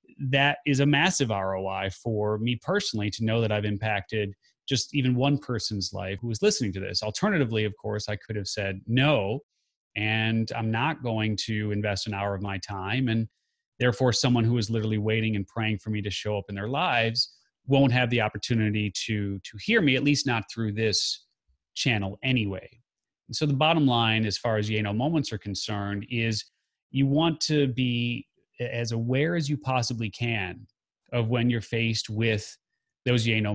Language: English